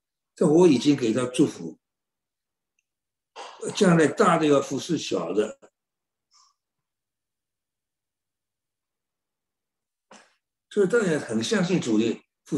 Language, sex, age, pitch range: Chinese, male, 60-79, 125-185 Hz